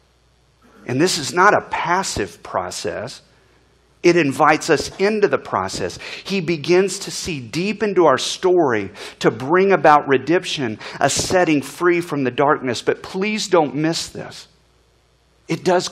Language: English